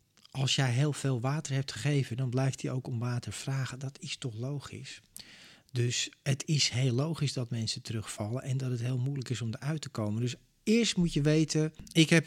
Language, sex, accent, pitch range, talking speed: Dutch, male, Dutch, 120-150 Hz, 210 wpm